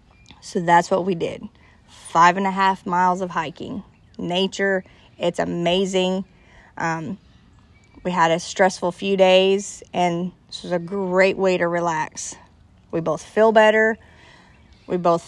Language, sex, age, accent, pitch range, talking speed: English, female, 30-49, American, 170-195 Hz, 140 wpm